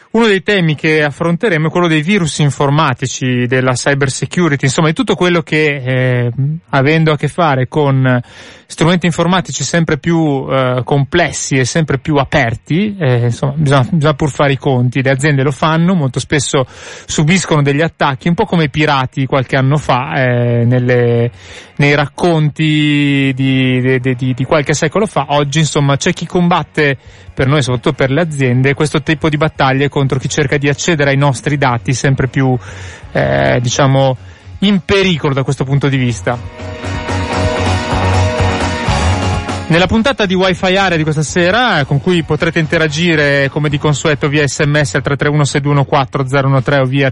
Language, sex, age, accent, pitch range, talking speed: Italian, male, 30-49, native, 130-160 Hz, 160 wpm